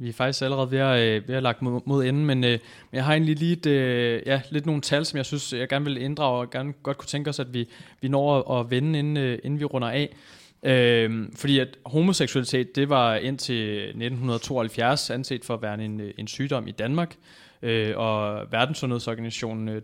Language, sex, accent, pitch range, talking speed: Danish, male, native, 115-140 Hz, 190 wpm